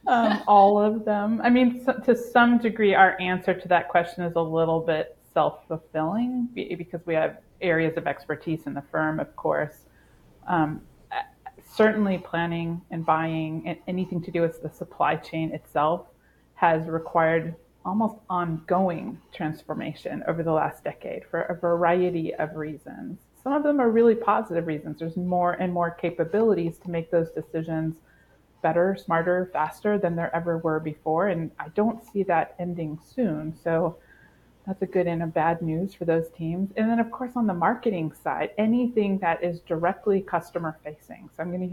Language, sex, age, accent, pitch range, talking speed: English, female, 30-49, American, 165-200 Hz, 165 wpm